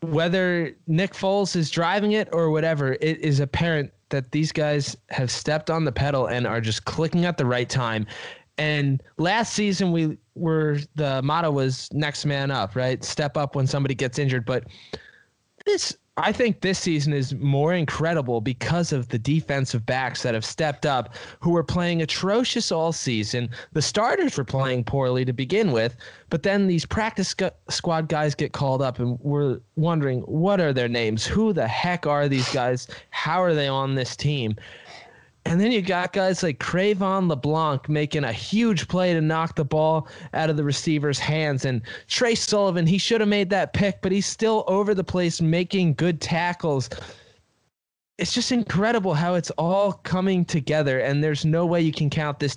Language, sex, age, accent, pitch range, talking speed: English, male, 20-39, American, 135-170 Hz, 185 wpm